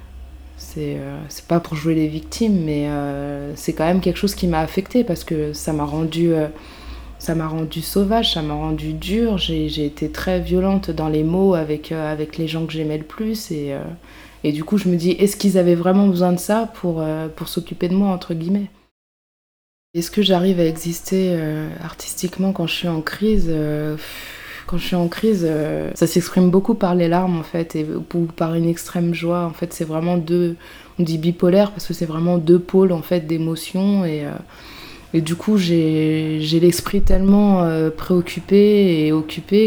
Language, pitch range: French, 155-185 Hz